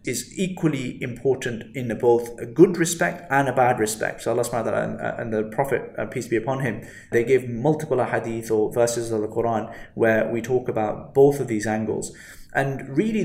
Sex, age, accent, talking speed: male, 20-39, British, 190 wpm